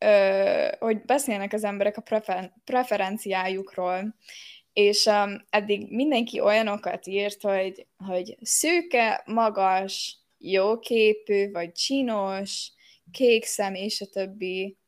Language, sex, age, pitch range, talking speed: Hungarian, female, 10-29, 195-240 Hz, 100 wpm